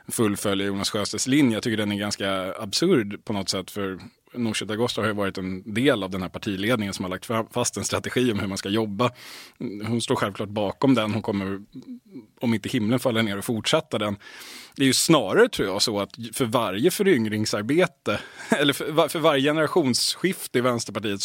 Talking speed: 200 wpm